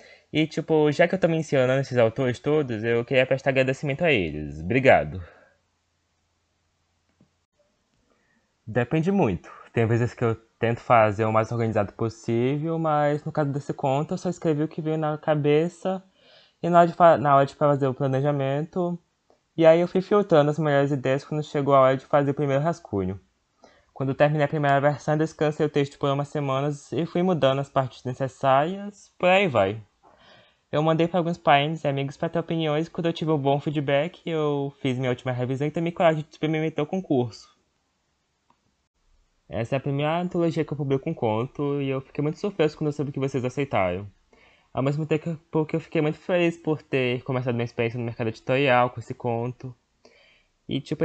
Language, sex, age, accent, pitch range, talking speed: Portuguese, male, 20-39, Brazilian, 125-155 Hz, 190 wpm